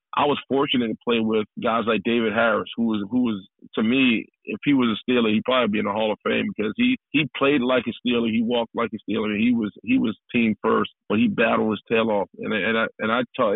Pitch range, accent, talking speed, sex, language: 110-140 Hz, American, 260 wpm, male, English